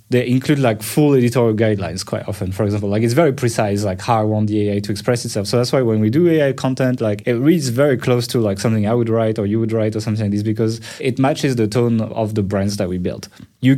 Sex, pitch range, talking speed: male, 110-130 Hz, 270 wpm